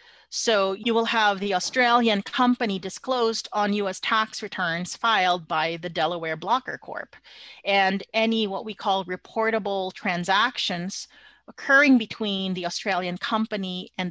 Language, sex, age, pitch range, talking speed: English, female, 30-49, 185-230 Hz, 130 wpm